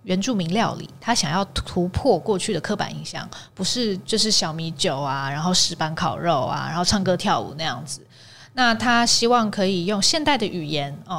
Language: Chinese